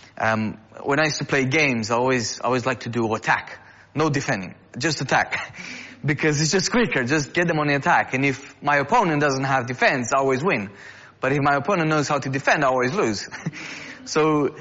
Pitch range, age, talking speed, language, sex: 115-145 Hz, 20-39, 205 wpm, English, male